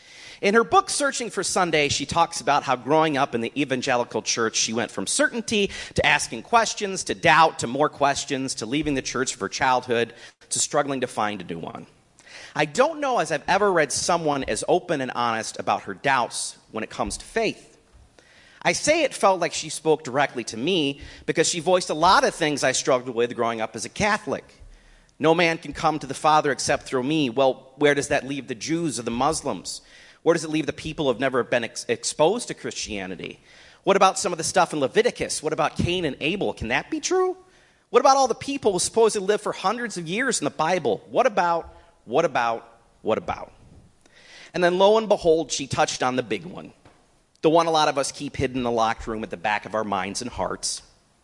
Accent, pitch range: American, 125-175 Hz